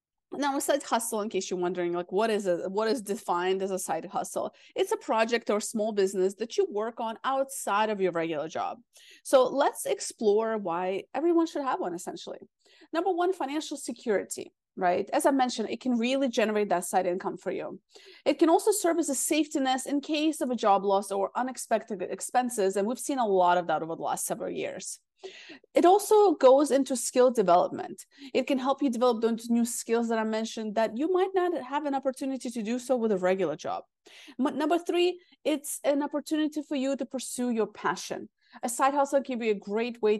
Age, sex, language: 30-49, female, English